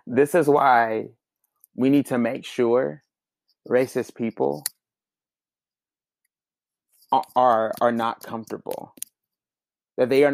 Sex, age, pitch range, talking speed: male, 30-49, 115-140 Hz, 100 wpm